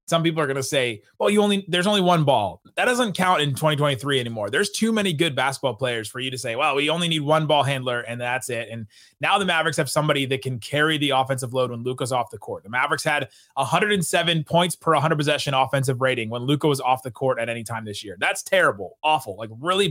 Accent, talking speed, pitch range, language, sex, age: American, 245 wpm, 135-170 Hz, English, male, 30-49